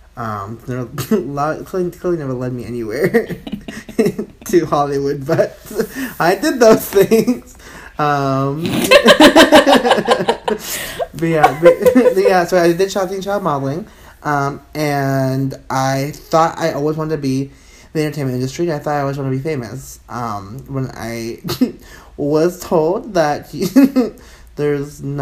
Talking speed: 125 wpm